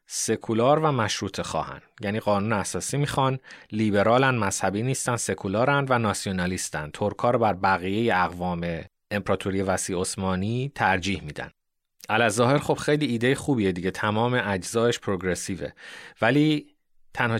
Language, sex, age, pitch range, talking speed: Persian, male, 30-49, 95-130 Hz, 115 wpm